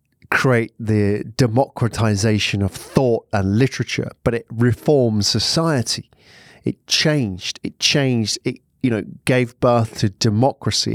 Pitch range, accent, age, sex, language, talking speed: 110-135 Hz, British, 40-59, male, English, 120 wpm